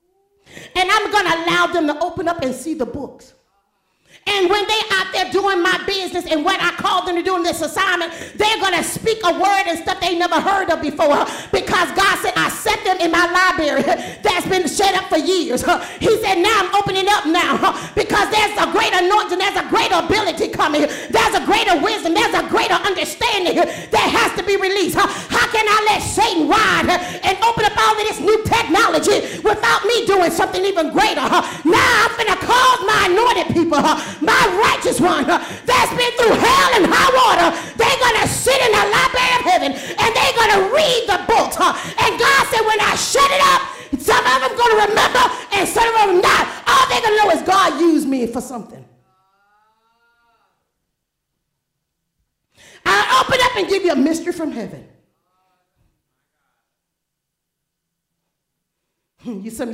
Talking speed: 190 wpm